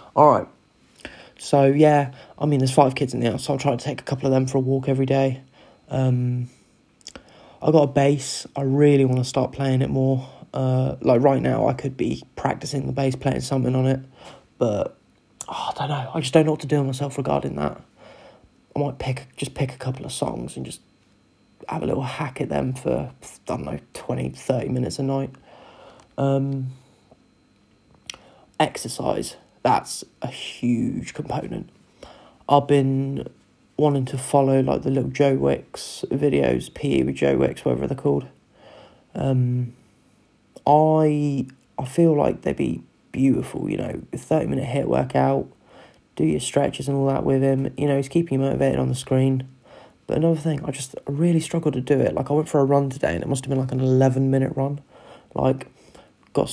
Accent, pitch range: British, 130-140 Hz